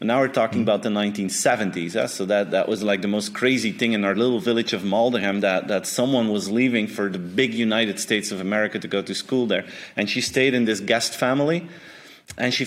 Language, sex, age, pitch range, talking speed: English, male, 30-49, 100-120 Hz, 225 wpm